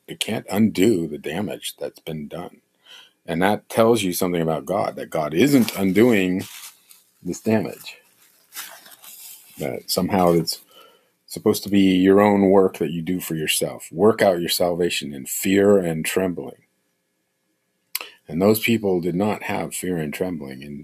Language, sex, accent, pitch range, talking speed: English, male, American, 85-105 Hz, 150 wpm